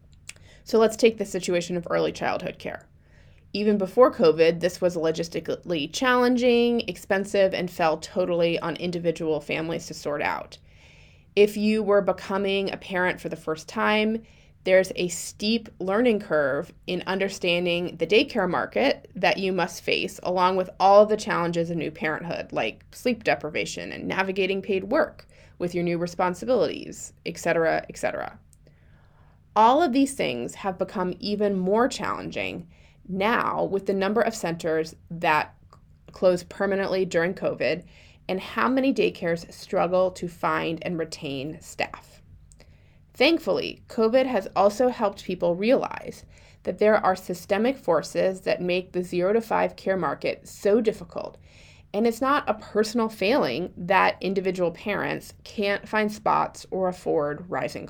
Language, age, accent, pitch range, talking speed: English, 20-39, American, 160-205 Hz, 145 wpm